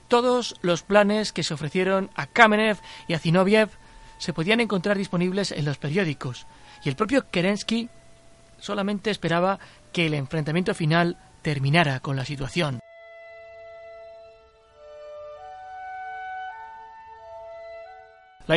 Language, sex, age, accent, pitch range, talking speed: Spanish, male, 30-49, Spanish, 150-215 Hz, 105 wpm